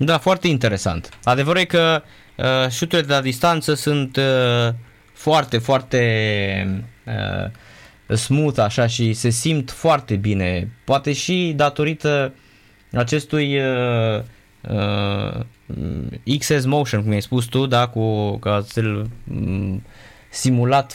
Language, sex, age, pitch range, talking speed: Romanian, male, 20-39, 105-130 Hz, 110 wpm